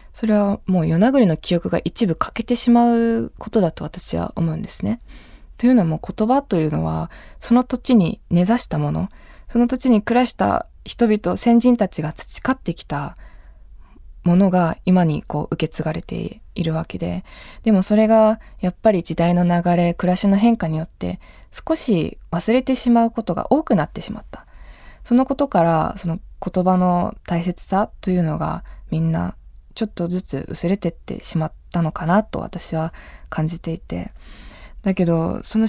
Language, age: Japanese, 20-39